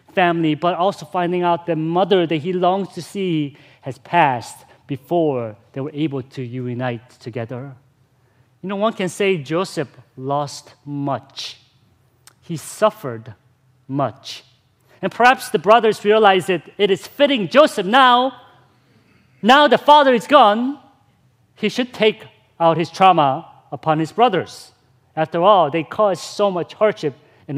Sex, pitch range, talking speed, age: male, 130-200 Hz, 140 wpm, 40-59